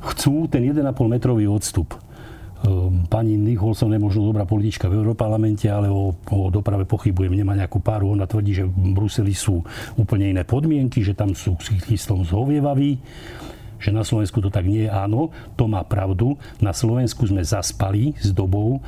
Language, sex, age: Slovak, male, 40-59